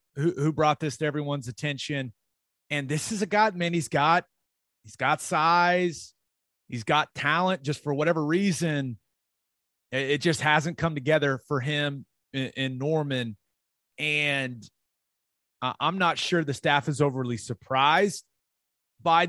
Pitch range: 130-165 Hz